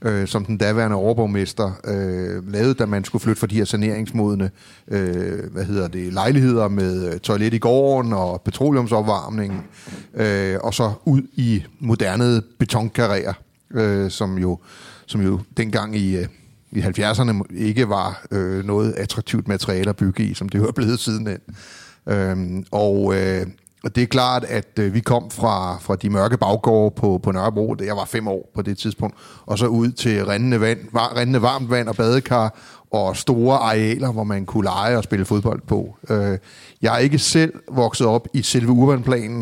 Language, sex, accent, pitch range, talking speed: Danish, male, native, 100-120 Hz, 175 wpm